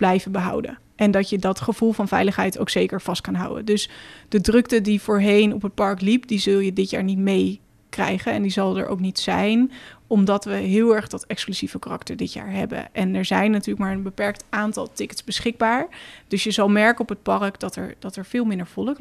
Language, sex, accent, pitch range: Dutch, female, Dutch, 200-230 Hz